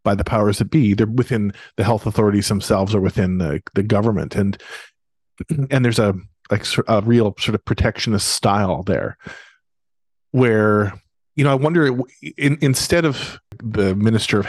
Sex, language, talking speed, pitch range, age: male, English, 160 wpm, 105-130 Hz, 40-59